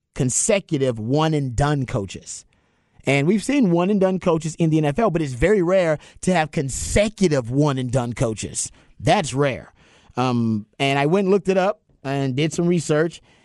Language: English